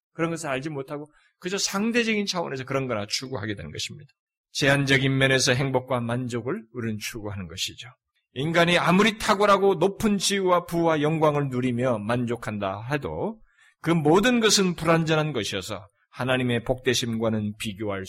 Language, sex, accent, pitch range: Korean, male, native, 130-165 Hz